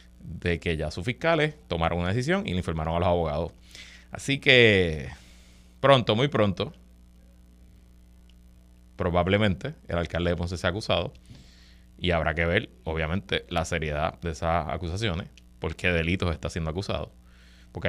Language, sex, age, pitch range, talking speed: Spanish, male, 30-49, 75-95 Hz, 145 wpm